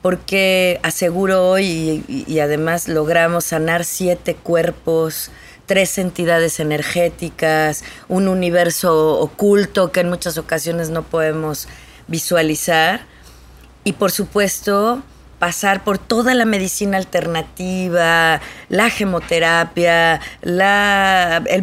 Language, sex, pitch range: Spanish, female, 165-195 Hz